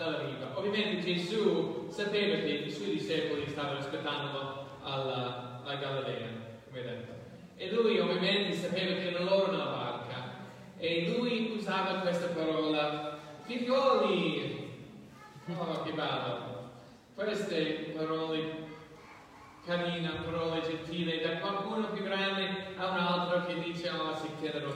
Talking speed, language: 130 wpm, Italian